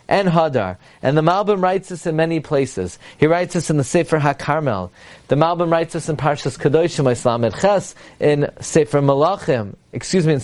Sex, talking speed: male, 180 wpm